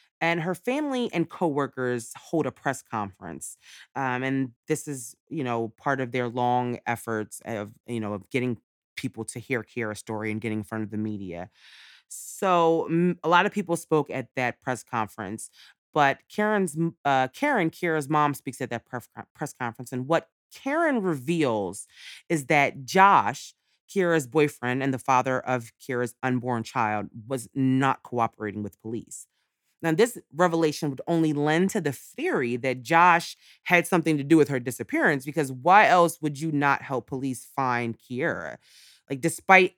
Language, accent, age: English, American, 30-49